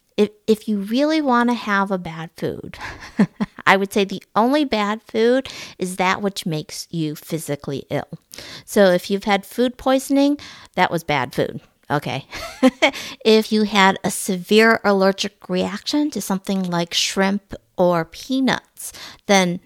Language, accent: English, American